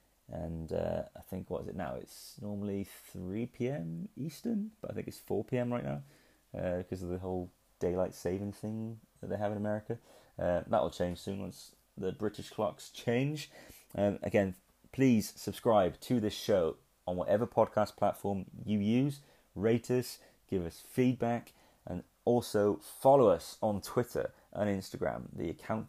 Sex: male